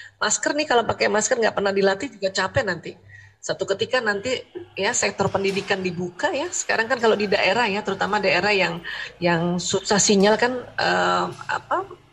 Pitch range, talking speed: 180-230 Hz, 170 wpm